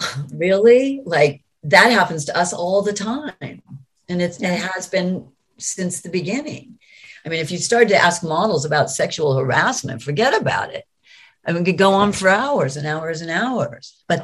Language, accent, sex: English, American, female